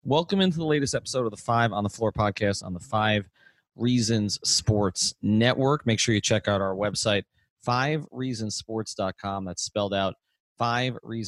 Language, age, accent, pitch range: English, 30-49, American, 100-125 Hz